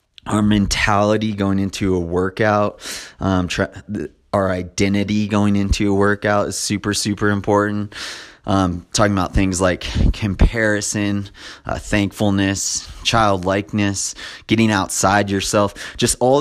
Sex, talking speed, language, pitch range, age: male, 115 wpm, English, 95-105 Hz, 20-39